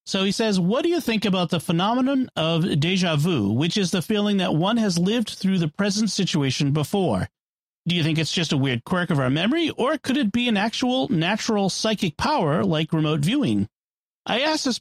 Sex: male